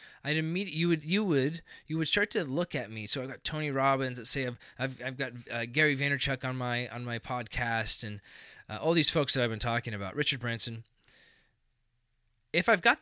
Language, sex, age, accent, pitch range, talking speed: English, male, 20-39, American, 110-135 Hz, 210 wpm